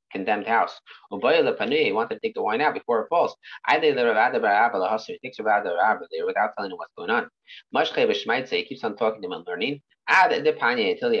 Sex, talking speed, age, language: male, 195 wpm, 30-49, English